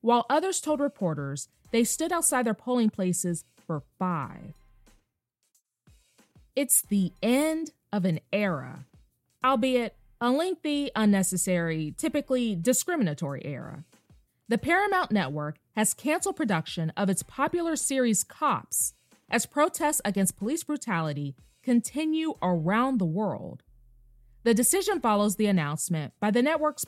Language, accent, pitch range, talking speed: English, American, 170-270 Hz, 120 wpm